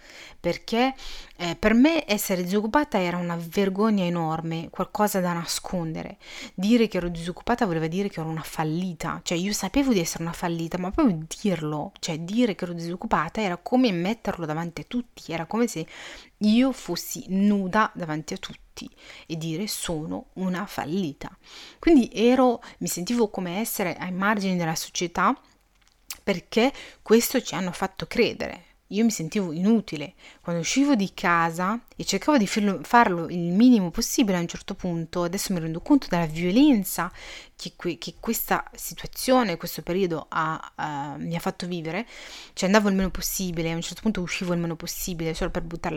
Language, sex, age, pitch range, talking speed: Italian, female, 30-49, 170-215 Hz, 160 wpm